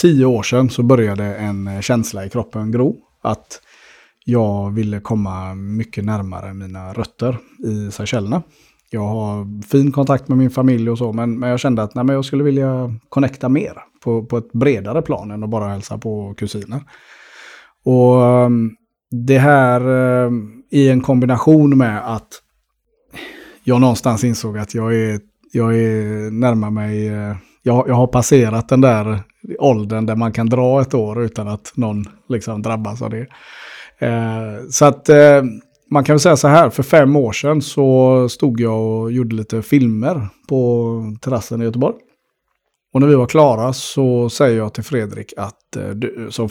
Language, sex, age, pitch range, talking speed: Swedish, male, 30-49, 110-130 Hz, 165 wpm